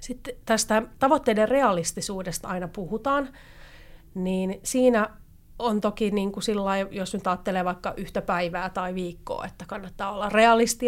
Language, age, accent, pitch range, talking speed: Finnish, 30-49, native, 185-225 Hz, 140 wpm